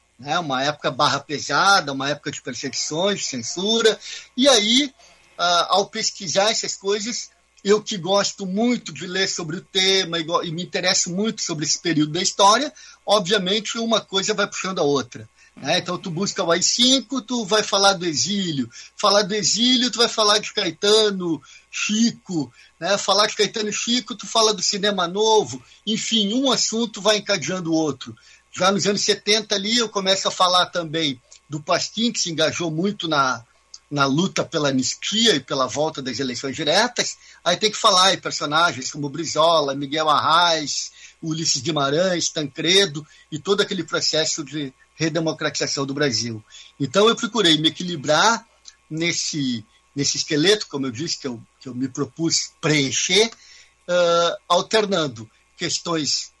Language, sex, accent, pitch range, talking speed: Portuguese, male, Brazilian, 150-210 Hz, 155 wpm